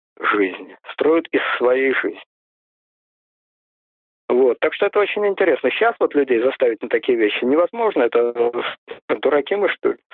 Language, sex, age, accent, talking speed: Russian, male, 50-69, native, 140 wpm